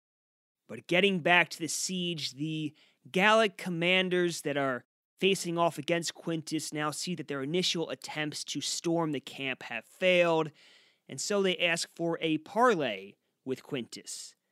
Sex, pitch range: male, 140-185 Hz